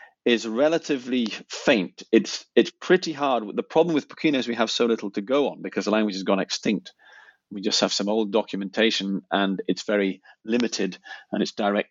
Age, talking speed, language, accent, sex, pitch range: 40-59, 190 wpm, English, British, male, 100-120 Hz